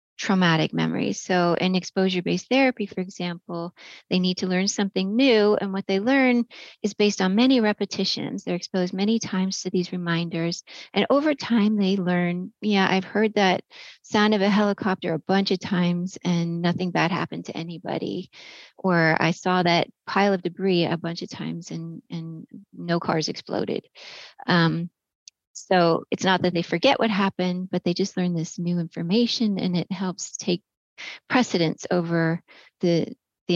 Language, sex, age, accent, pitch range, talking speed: English, female, 30-49, American, 175-210 Hz, 165 wpm